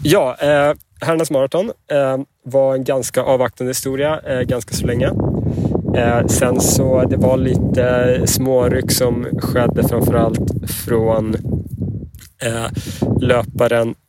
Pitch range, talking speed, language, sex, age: 110-125 Hz, 95 wpm, English, male, 20-39